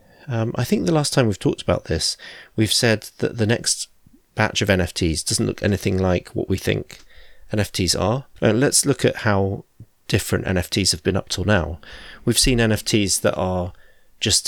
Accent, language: British, English